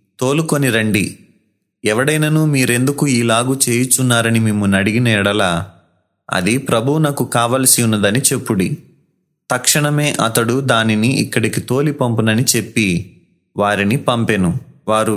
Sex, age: male, 30-49